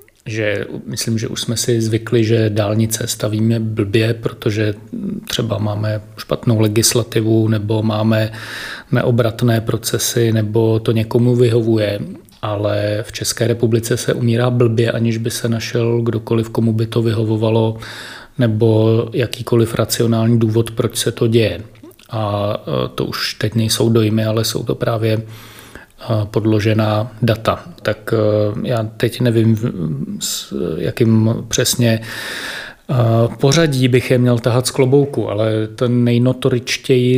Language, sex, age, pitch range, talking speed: Czech, male, 30-49, 110-120 Hz, 125 wpm